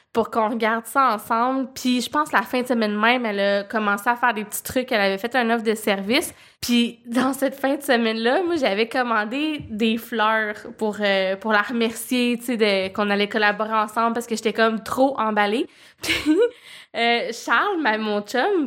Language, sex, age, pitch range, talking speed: French, female, 20-39, 220-265 Hz, 200 wpm